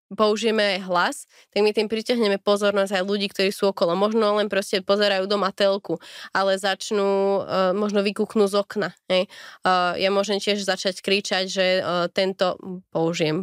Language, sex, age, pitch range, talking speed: Slovak, female, 20-39, 185-210 Hz, 160 wpm